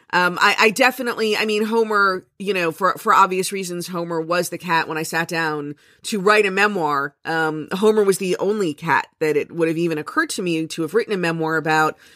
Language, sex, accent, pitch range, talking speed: English, female, American, 165-210 Hz, 220 wpm